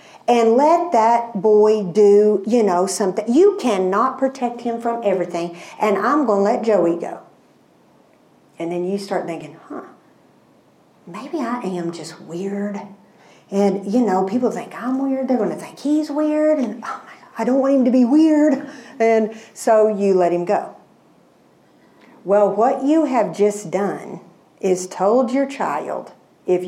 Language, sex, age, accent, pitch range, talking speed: English, female, 50-69, American, 185-255 Hz, 165 wpm